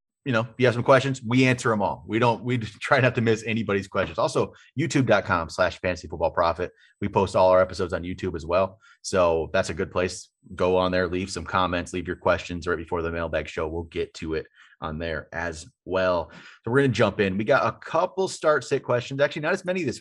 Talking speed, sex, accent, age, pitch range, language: 235 wpm, male, American, 30-49, 90-110 Hz, English